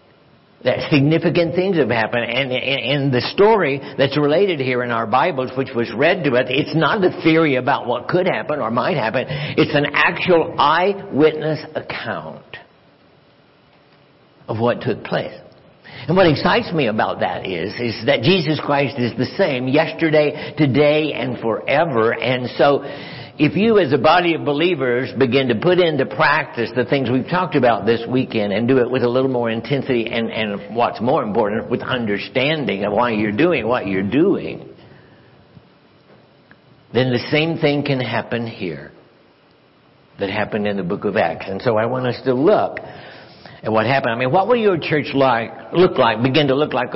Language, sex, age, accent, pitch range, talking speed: English, male, 60-79, American, 120-150 Hz, 180 wpm